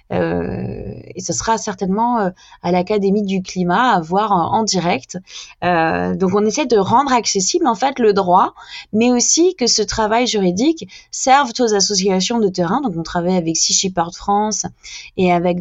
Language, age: French, 20-39